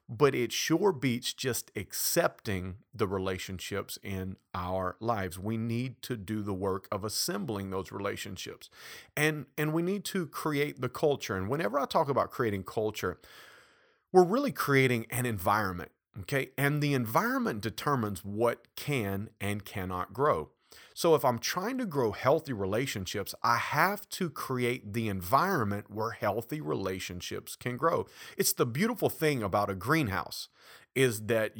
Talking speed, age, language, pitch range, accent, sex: 150 wpm, 40-59, English, 105-145 Hz, American, male